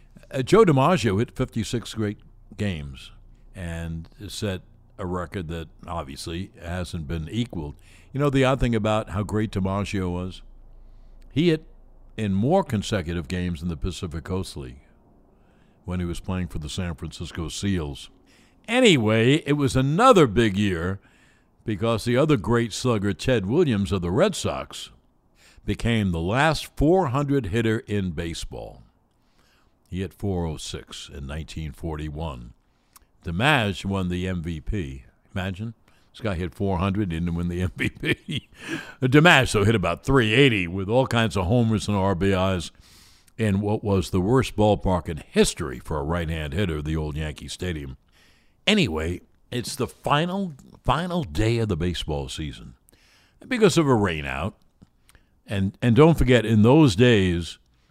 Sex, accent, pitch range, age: male, American, 85-115 Hz, 60-79